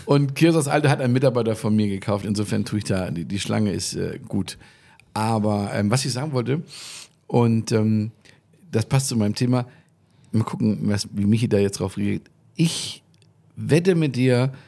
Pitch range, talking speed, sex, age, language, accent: 105-135 Hz, 185 wpm, male, 50-69, German, German